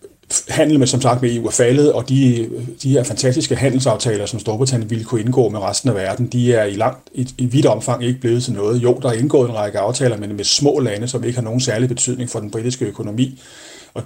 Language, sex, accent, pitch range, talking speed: Danish, male, native, 115-130 Hz, 245 wpm